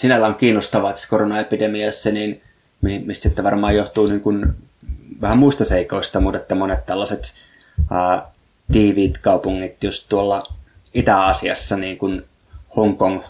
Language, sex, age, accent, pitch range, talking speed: Finnish, male, 20-39, native, 95-105 Hz, 110 wpm